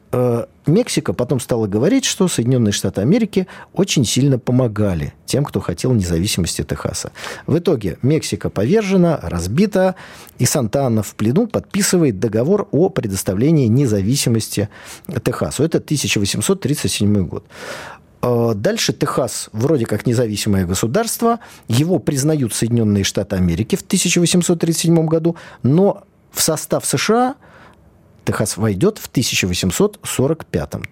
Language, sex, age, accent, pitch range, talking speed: Russian, male, 40-59, native, 105-170 Hz, 110 wpm